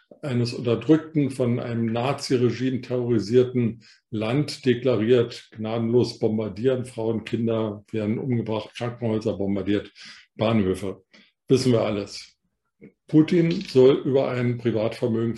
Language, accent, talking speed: German, German, 100 wpm